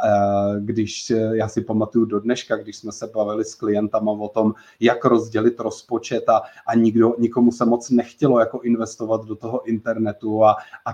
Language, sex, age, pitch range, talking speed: Czech, male, 30-49, 110-115 Hz, 170 wpm